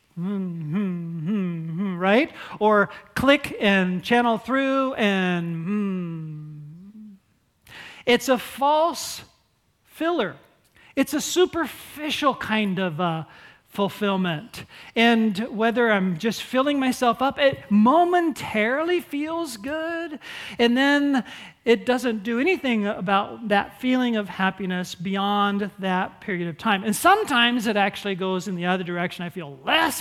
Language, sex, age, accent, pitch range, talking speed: English, male, 40-59, American, 200-260 Hz, 130 wpm